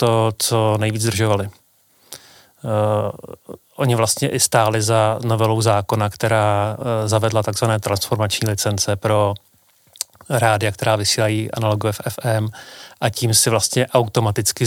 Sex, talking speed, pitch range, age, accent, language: male, 120 wpm, 110-120 Hz, 30-49, native, Czech